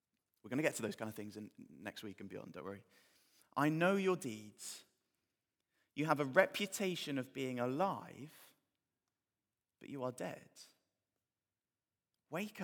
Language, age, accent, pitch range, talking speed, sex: English, 20-39, British, 115-160 Hz, 145 wpm, male